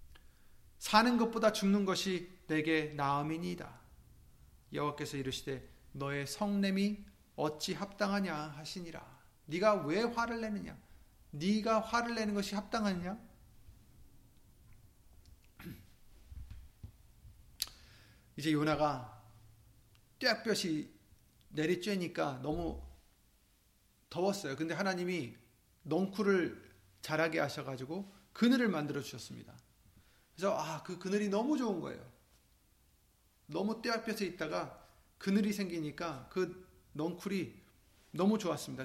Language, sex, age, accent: Korean, male, 30-49, native